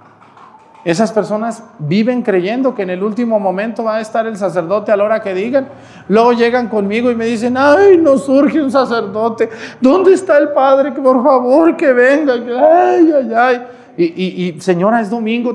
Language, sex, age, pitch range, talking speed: Spanish, male, 40-59, 210-275 Hz, 185 wpm